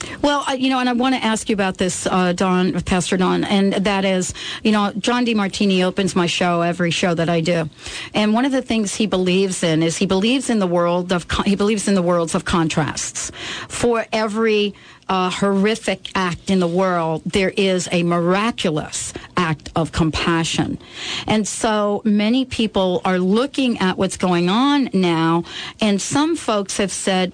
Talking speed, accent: 180 wpm, American